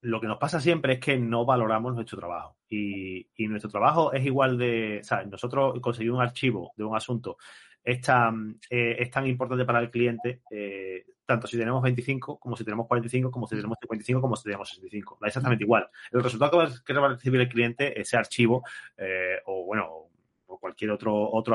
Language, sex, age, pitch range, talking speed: Spanish, male, 30-49, 110-140 Hz, 205 wpm